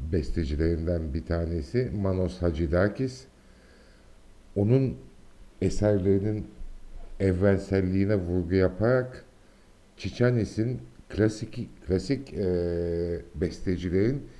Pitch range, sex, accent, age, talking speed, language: 85-105 Hz, male, Turkish, 60-79, 60 wpm, Greek